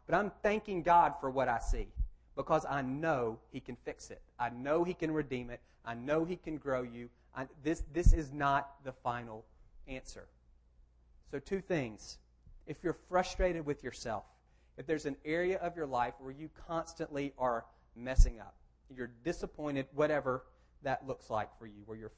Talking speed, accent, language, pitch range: 180 wpm, American, English, 120-170 Hz